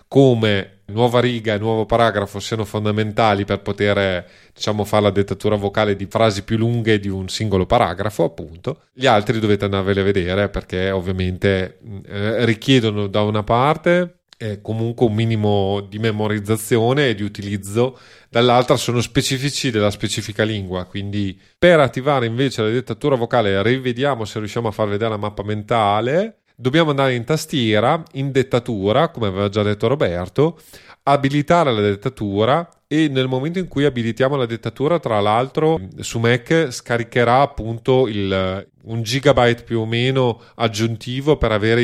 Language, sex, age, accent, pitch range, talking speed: Italian, male, 30-49, native, 105-130 Hz, 150 wpm